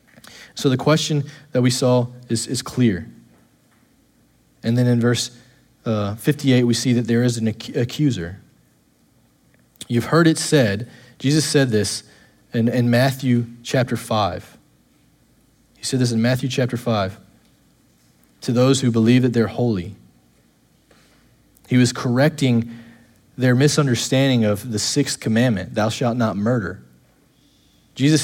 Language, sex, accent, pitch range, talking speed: English, male, American, 115-150 Hz, 130 wpm